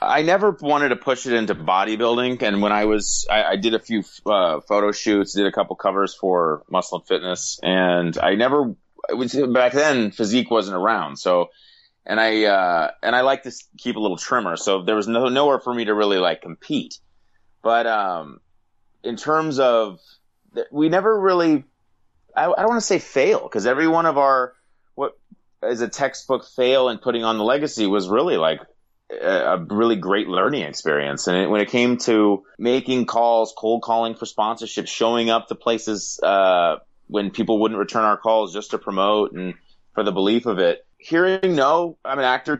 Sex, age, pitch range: male, 30-49, 105-130 Hz